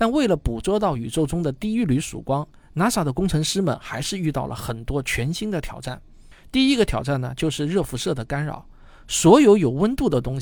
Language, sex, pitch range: Chinese, male, 130-205 Hz